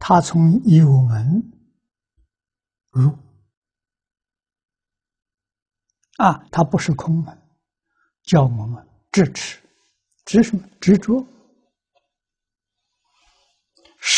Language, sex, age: Chinese, male, 60-79